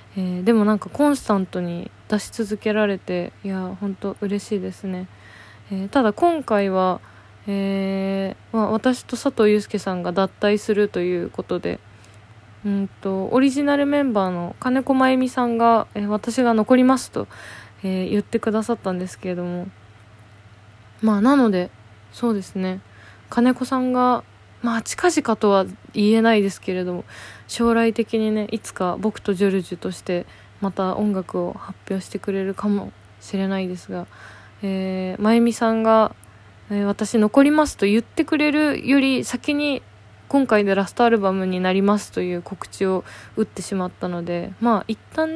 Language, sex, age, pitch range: Japanese, female, 20-39, 180-225 Hz